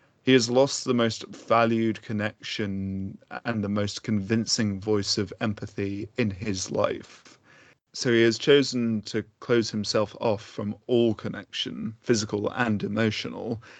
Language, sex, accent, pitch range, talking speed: English, male, British, 105-120 Hz, 135 wpm